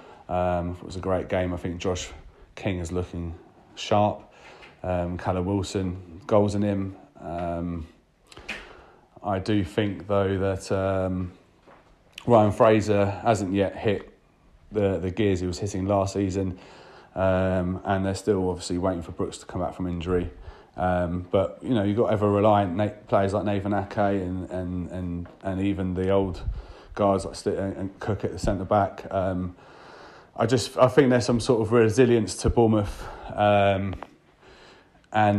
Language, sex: English, male